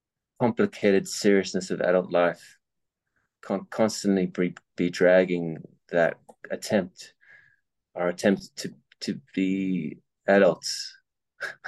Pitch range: 85-105 Hz